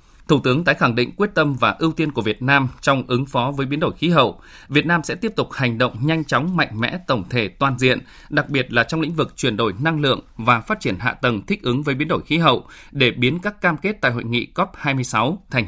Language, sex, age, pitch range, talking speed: Vietnamese, male, 20-39, 120-155 Hz, 260 wpm